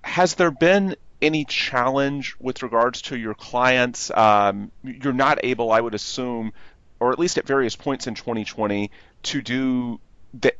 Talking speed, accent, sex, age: 160 wpm, American, male, 30-49